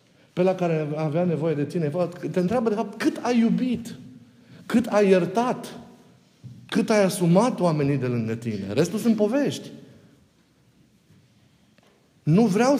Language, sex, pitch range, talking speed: Romanian, male, 140-205 Hz, 135 wpm